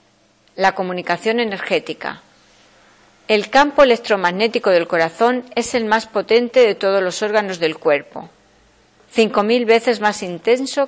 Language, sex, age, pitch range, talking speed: Spanish, female, 40-59, 170-230 Hz, 125 wpm